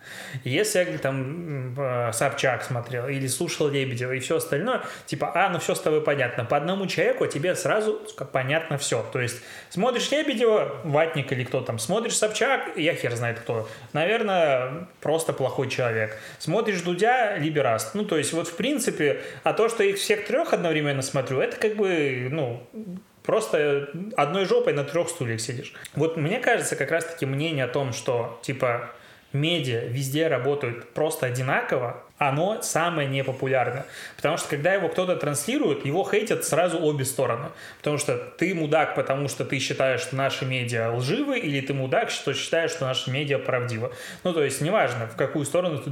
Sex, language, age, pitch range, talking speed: male, Russian, 20-39, 130-170 Hz, 170 wpm